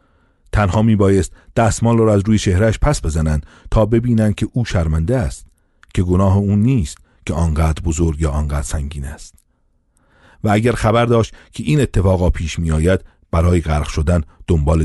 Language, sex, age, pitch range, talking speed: Persian, male, 40-59, 80-105 Hz, 170 wpm